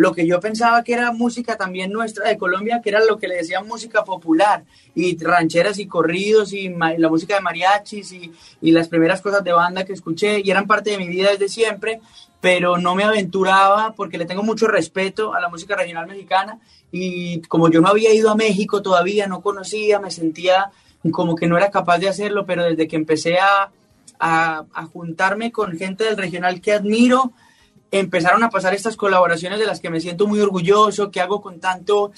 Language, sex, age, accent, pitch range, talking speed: Spanish, male, 20-39, Colombian, 175-210 Hz, 205 wpm